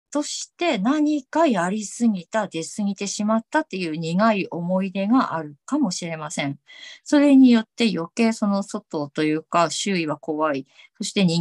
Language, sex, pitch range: Japanese, female, 160-235 Hz